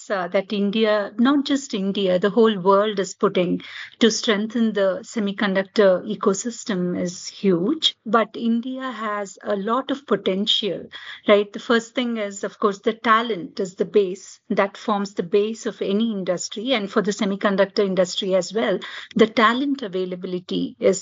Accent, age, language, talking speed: Indian, 50-69, English, 155 wpm